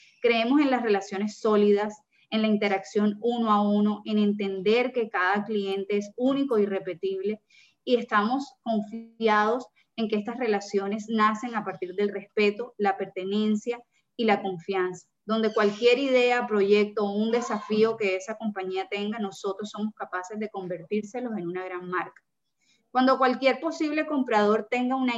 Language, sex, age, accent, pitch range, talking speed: Spanish, female, 20-39, American, 200-230 Hz, 150 wpm